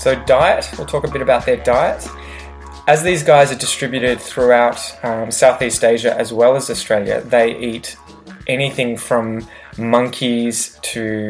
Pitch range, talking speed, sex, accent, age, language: 110-130 Hz, 150 wpm, male, Australian, 20-39, English